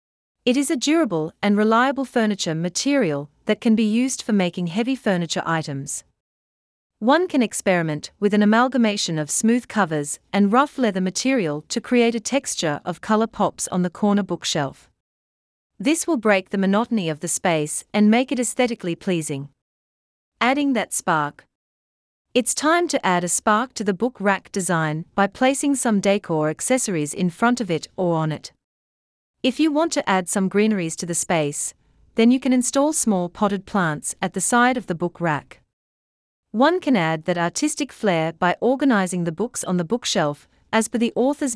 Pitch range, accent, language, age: 160-235 Hz, Australian, English, 40-59